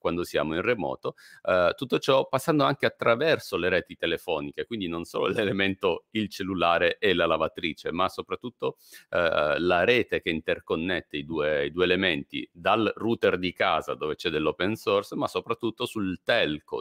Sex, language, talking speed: male, Italian, 160 wpm